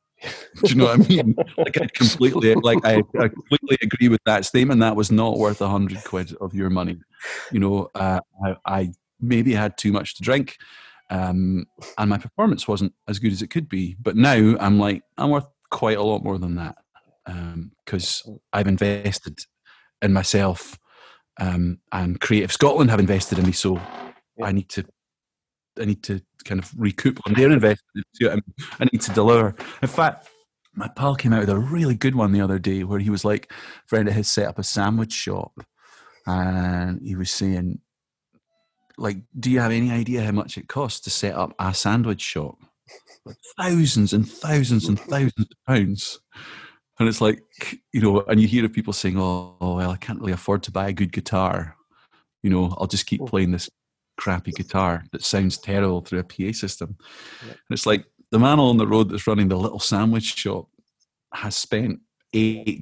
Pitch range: 95-115 Hz